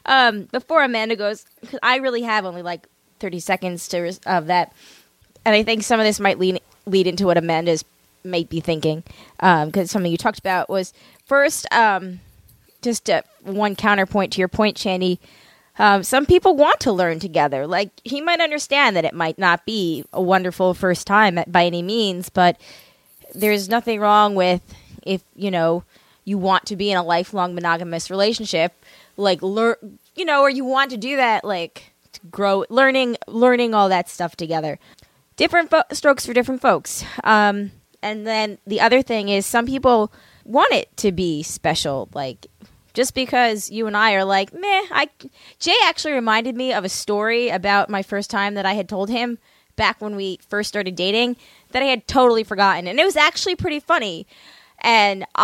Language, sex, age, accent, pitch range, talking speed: English, female, 20-39, American, 185-245 Hz, 185 wpm